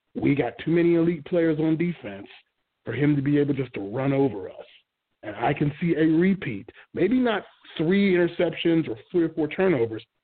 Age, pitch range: 30-49, 125-160 Hz